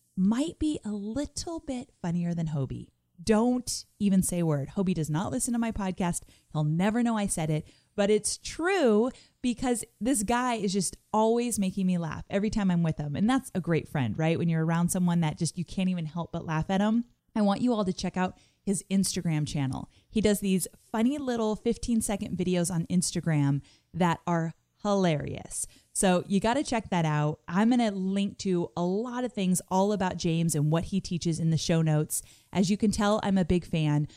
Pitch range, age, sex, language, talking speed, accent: 165-220 Hz, 20-39, female, English, 210 wpm, American